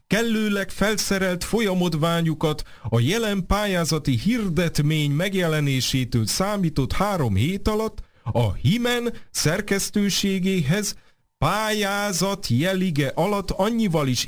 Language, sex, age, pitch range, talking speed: Hungarian, male, 40-59, 100-170 Hz, 85 wpm